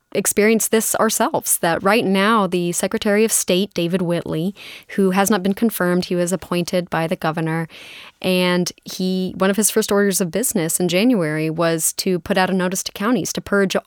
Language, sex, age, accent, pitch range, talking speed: English, female, 20-39, American, 180-220 Hz, 190 wpm